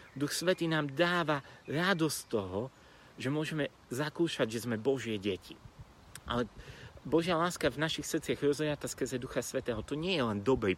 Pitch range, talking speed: 115-150 Hz, 155 wpm